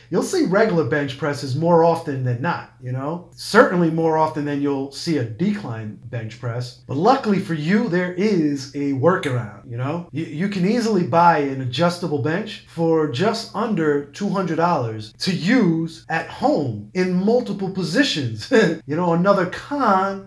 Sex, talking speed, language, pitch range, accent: male, 155 wpm, English, 150-205 Hz, American